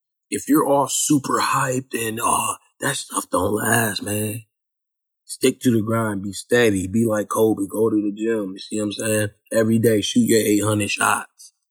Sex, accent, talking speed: male, American, 180 wpm